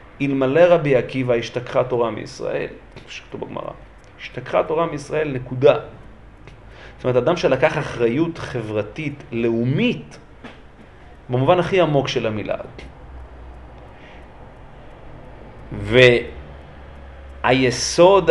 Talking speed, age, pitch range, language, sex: 85 wpm, 40-59, 120-165 Hz, Hebrew, male